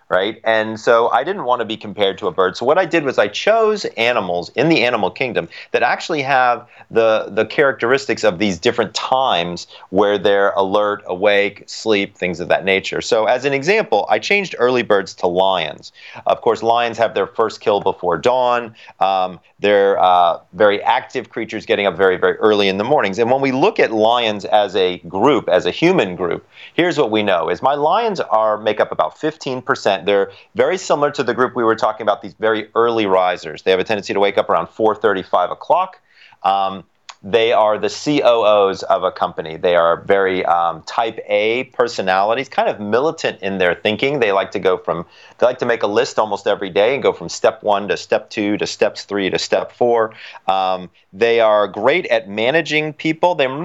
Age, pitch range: 40-59, 100-130 Hz